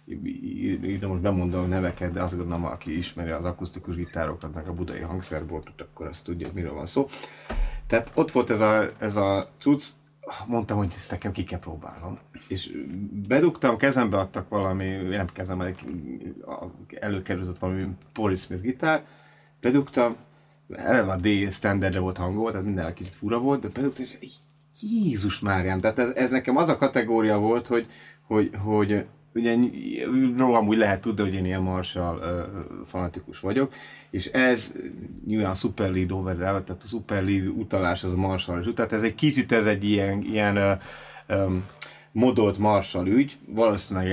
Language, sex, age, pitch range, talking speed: Hungarian, male, 30-49, 95-115 Hz, 160 wpm